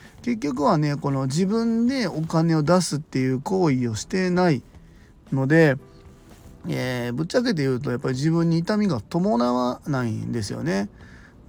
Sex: male